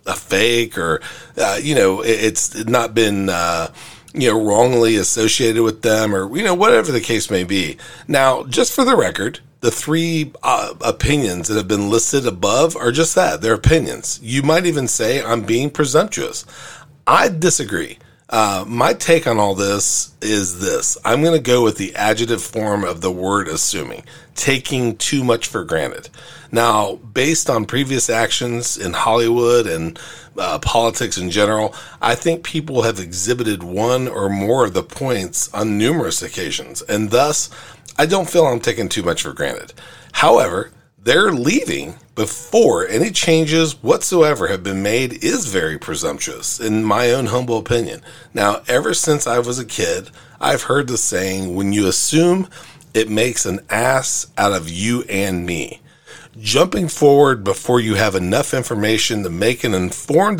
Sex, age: male, 40-59